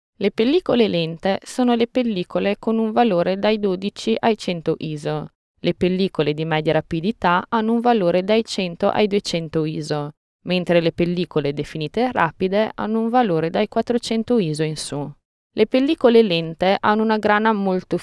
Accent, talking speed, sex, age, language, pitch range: native, 155 wpm, female, 20-39, Italian, 155-220 Hz